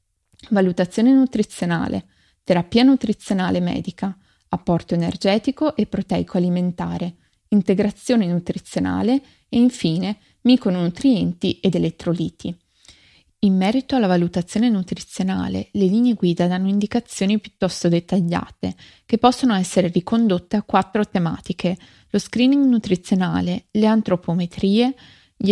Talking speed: 100 wpm